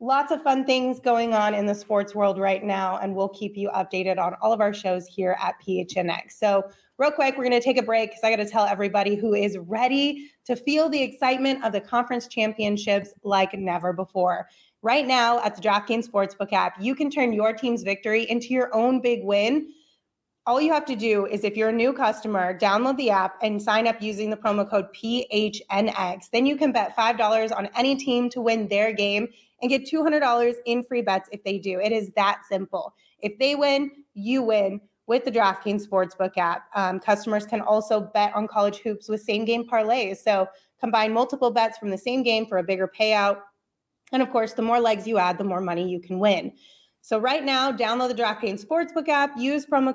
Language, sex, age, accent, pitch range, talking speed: English, female, 20-39, American, 200-245 Hz, 210 wpm